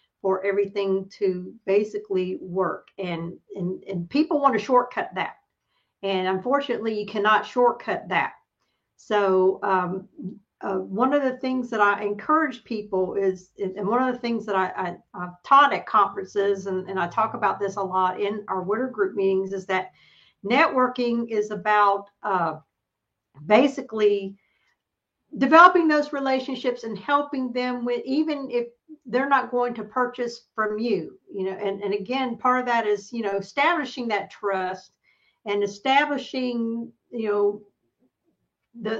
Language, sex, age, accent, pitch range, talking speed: English, female, 50-69, American, 195-245 Hz, 150 wpm